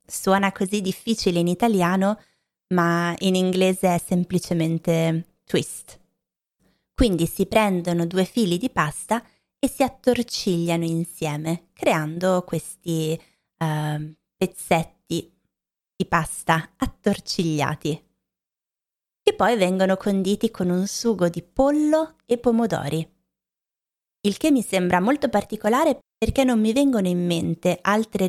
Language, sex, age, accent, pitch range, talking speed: Italian, female, 20-39, native, 170-215 Hz, 110 wpm